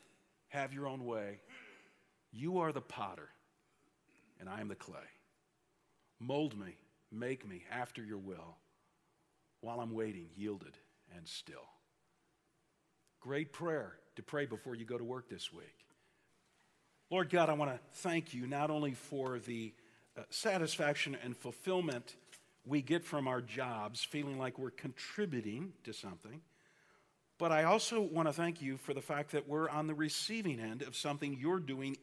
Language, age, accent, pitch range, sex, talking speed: English, 50-69, American, 120-160 Hz, male, 155 wpm